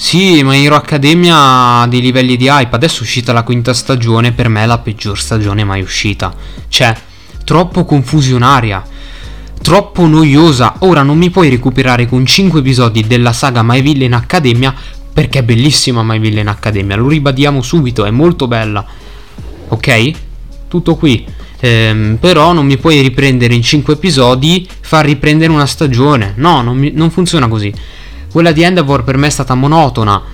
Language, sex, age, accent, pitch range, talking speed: Italian, male, 20-39, native, 110-140 Hz, 160 wpm